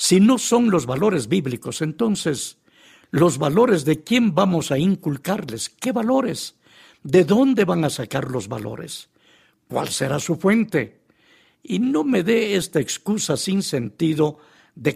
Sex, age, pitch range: male, 60-79, 150-195 Hz